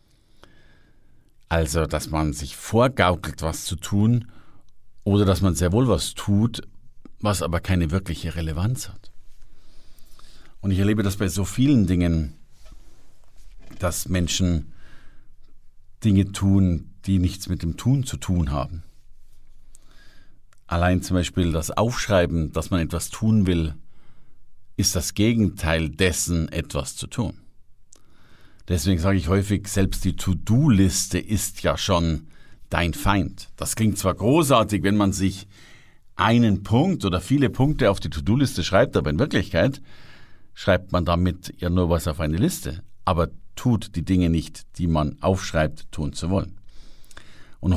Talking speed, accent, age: 140 wpm, German, 50-69